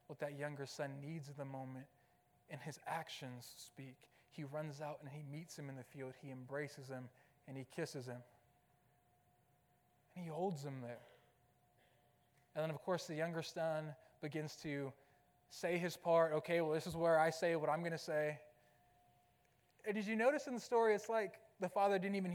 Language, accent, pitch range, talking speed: English, American, 135-195 Hz, 190 wpm